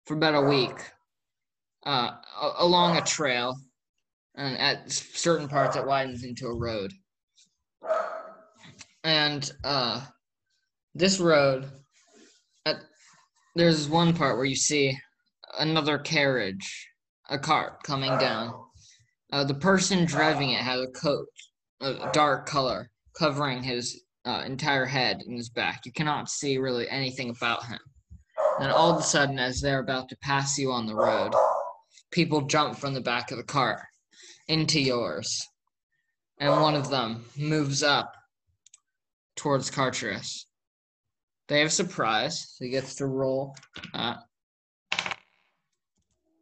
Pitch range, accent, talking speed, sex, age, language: 130-155 Hz, American, 130 wpm, male, 20-39, English